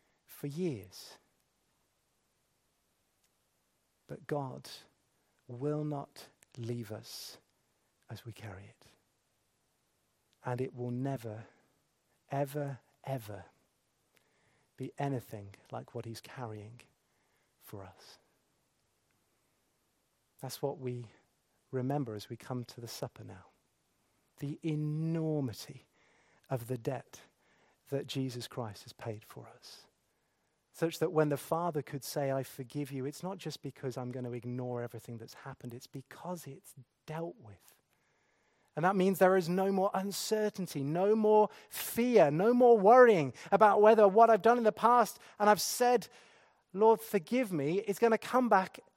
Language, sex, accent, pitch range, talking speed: English, male, British, 125-195 Hz, 130 wpm